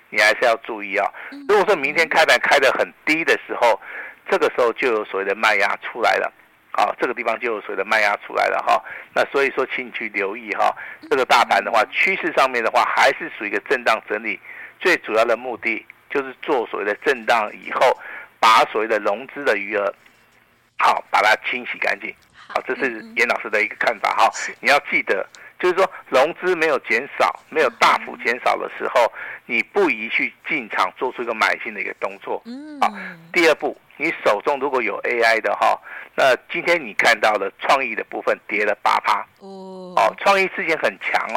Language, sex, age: Chinese, male, 50-69